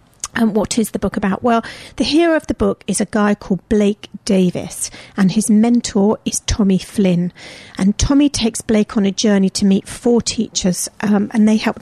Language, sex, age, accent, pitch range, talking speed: English, female, 40-59, British, 190-230 Hz, 200 wpm